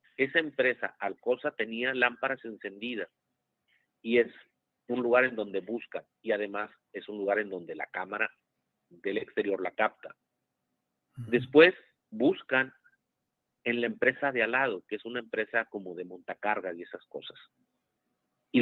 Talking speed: 145 wpm